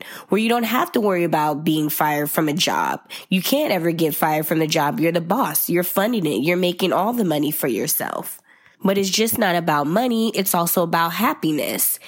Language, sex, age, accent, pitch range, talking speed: English, female, 20-39, American, 150-180 Hz, 215 wpm